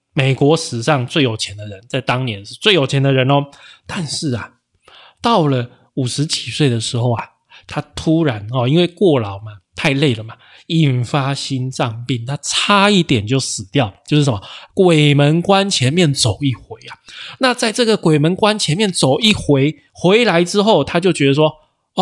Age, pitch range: 20-39, 125-165 Hz